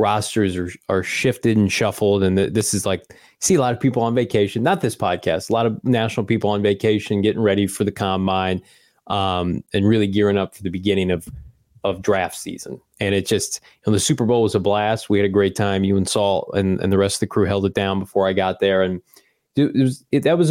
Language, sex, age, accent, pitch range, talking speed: English, male, 20-39, American, 100-115 Hz, 245 wpm